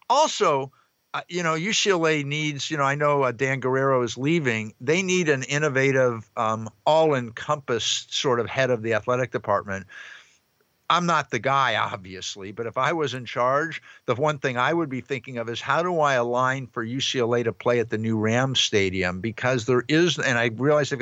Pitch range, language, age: 115-150 Hz, English, 50-69